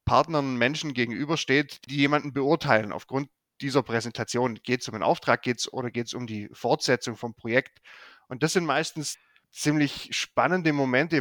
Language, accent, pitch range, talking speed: German, German, 125-150 Hz, 160 wpm